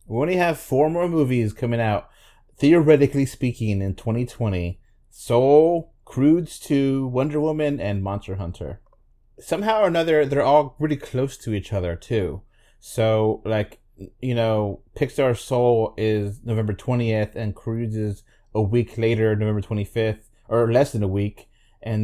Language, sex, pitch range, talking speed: English, male, 105-125 Hz, 145 wpm